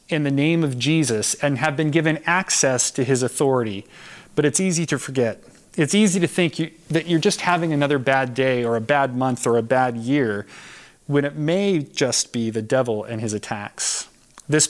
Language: English